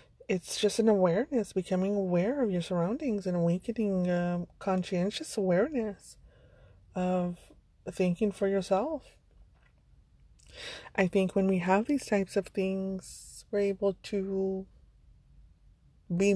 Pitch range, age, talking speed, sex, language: 185-220 Hz, 20-39, 115 wpm, female, English